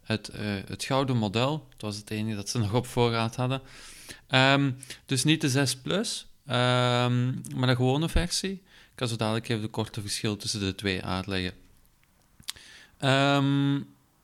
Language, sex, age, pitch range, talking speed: Dutch, male, 40-59, 110-135 Hz, 165 wpm